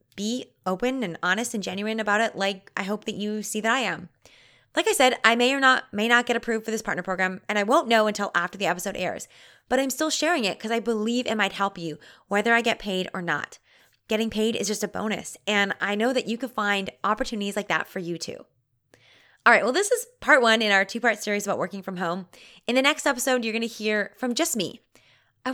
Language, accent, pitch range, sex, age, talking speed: English, American, 195-245 Hz, female, 20-39, 245 wpm